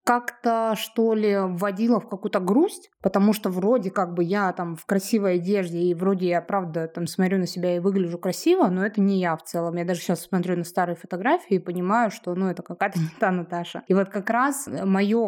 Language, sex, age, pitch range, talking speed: Russian, female, 20-39, 185-225 Hz, 210 wpm